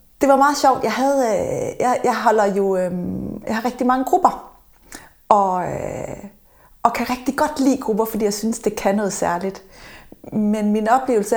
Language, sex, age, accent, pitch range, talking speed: Danish, female, 30-49, native, 195-255 Hz, 170 wpm